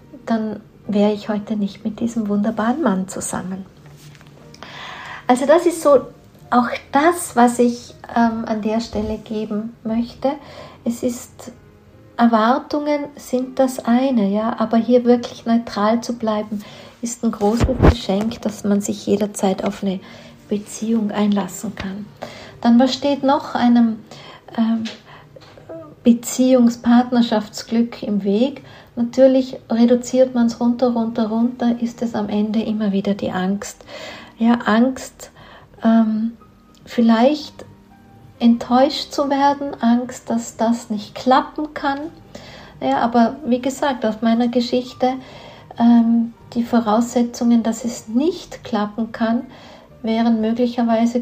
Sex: female